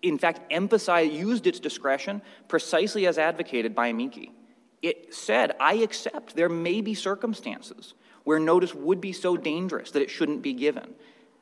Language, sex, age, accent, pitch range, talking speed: English, male, 30-49, American, 130-195 Hz, 160 wpm